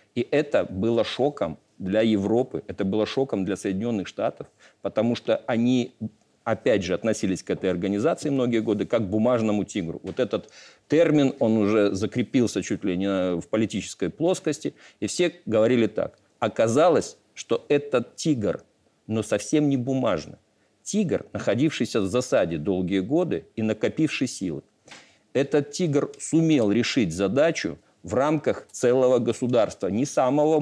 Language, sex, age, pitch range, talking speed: Russian, male, 50-69, 105-150 Hz, 140 wpm